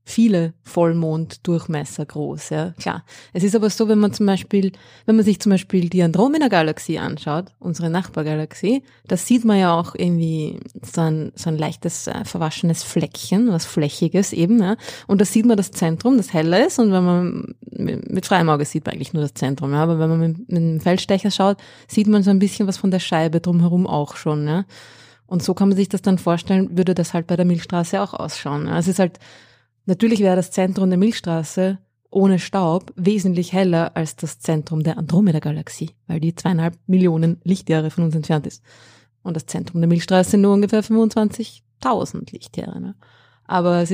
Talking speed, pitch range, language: 195 wpm, 160-195 Hz, German